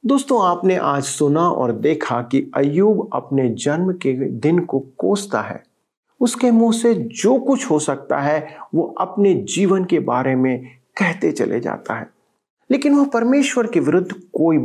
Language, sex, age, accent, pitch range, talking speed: Hindi, male, 40-59, native, 140-225 Hz, 160 wpm